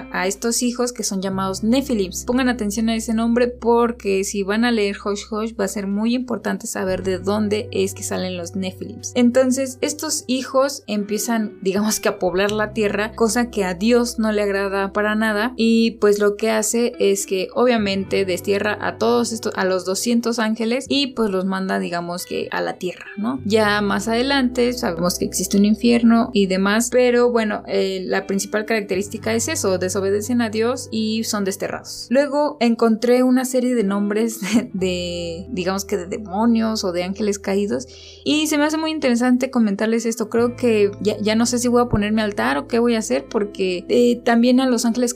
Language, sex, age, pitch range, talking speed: Spanish, female, 20-39, 200-240 Hz, 195 wpm